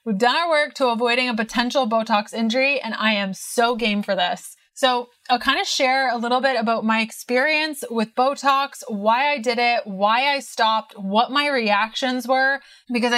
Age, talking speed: 20-39, 190 wpm